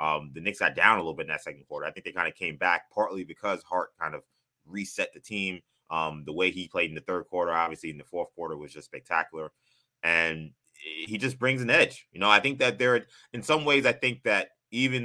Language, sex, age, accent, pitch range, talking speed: English, male, 20-39, American, 90-125 Hz, 250 wpm